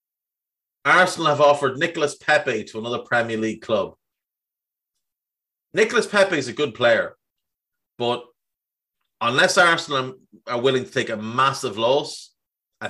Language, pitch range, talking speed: English, 110-145 Hz, 125 wpm